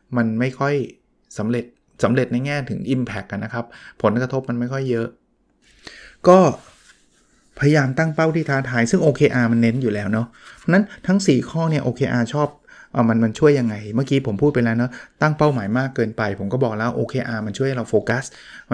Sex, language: male, Thai